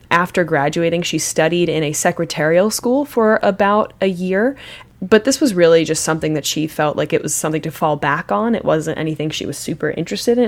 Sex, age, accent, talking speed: female, 20-39, American, 210 wpm